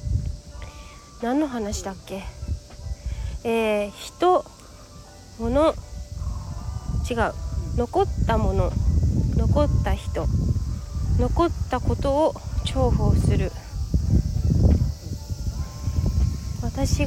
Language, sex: Japanese, female